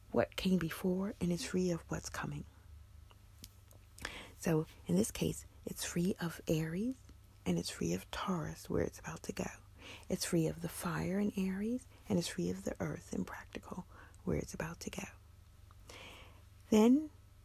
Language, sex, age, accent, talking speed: English, female, 40-59, American, 165 wpm